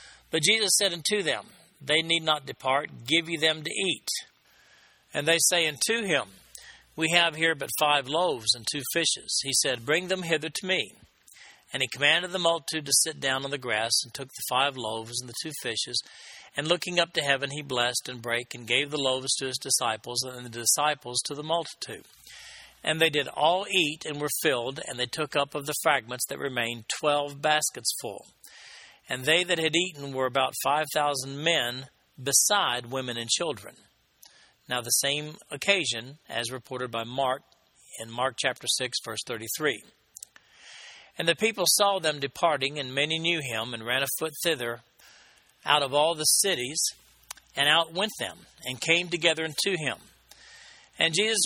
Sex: male